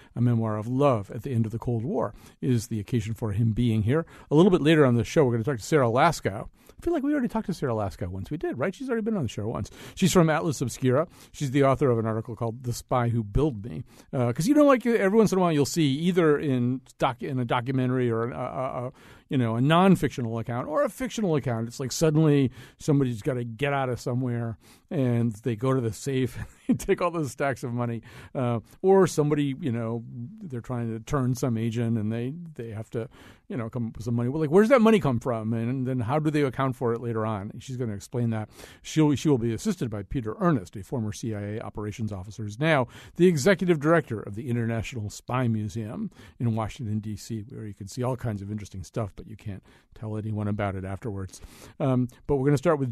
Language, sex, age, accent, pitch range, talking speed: English, male, 50-69, American, 115-150 Hz, 245 wpm